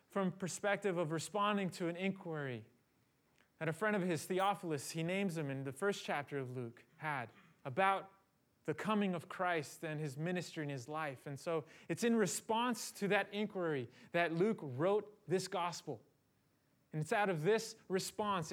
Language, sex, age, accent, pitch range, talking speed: English, male, 30-49, American, 150-195 Hz, 170 wpm